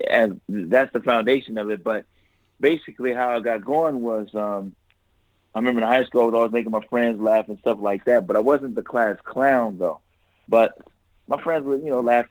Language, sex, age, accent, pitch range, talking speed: English, male, 30-49, American, 100-120 Hz, 215 wpm